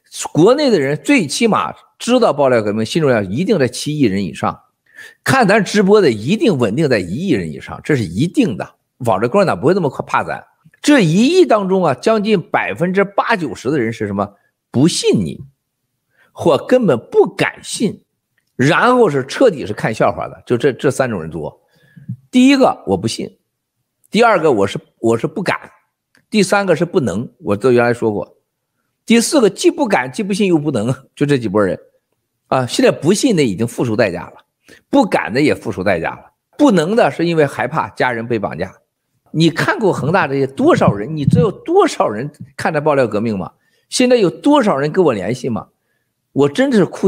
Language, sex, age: Chinese, male, 50-69